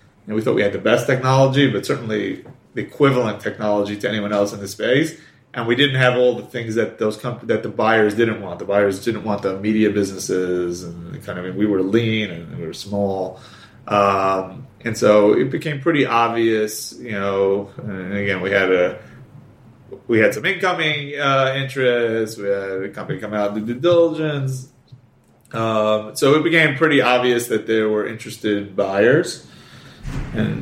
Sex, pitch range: male, 100-130 Hz